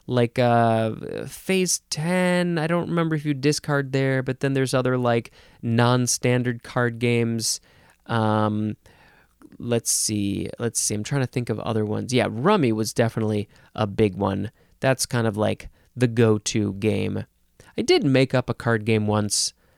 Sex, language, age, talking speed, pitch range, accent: male, English, 20-39, 160 wpm, 115-170 Hz, American